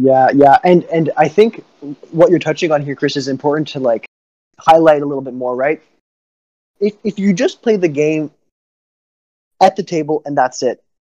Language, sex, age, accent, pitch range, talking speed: English, male, 20-39, American, 135-170 Hz, 190 wpm